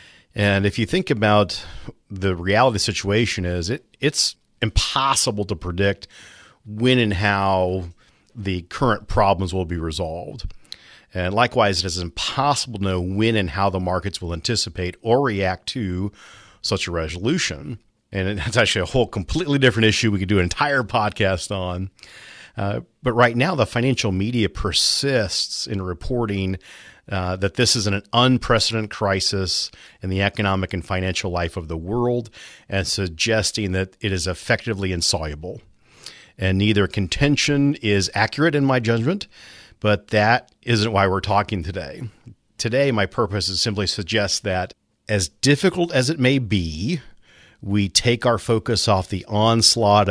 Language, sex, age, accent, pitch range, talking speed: English, male, 40-59, American, 95-115 Hz, 150 wpm